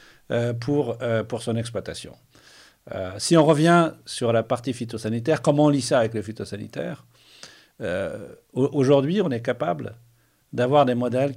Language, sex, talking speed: Romanian, male, 155 wpm